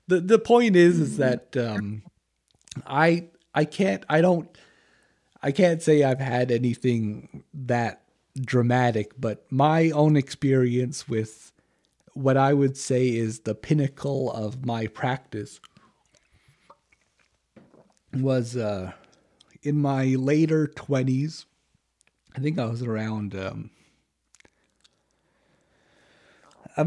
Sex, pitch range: male, 115-145 Hz